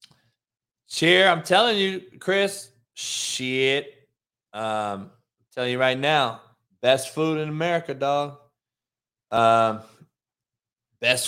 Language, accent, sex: English, American, male